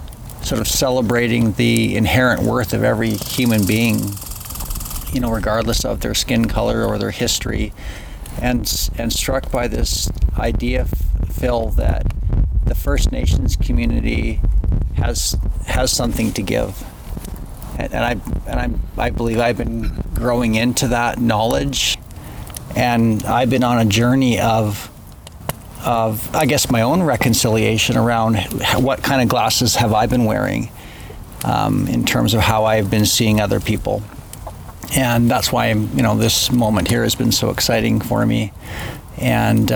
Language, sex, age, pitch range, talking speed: English, male, 50-69, 105-120 Hz, 145 wpm